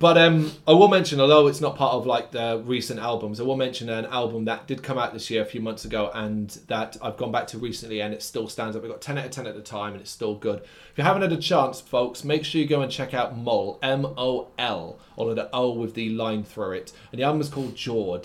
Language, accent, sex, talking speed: English, British, male, 275 wpm